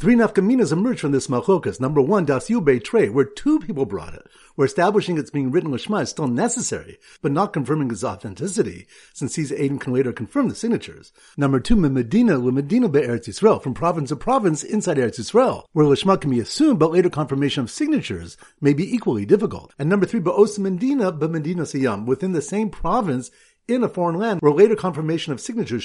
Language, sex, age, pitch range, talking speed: English, male, 50-69, 140-220 Hz, 190 wpm